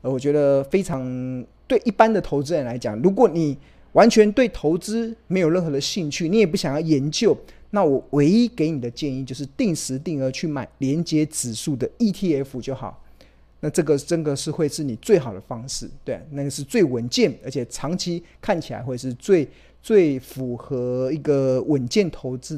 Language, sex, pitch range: Chinese, male, 130-185 Hz